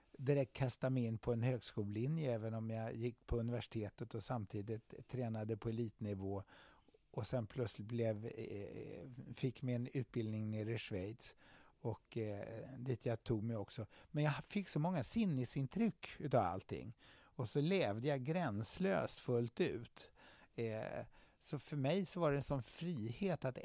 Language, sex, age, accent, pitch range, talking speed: English, male, 60-79, Swedish, 110-145 Hz, 155 wpm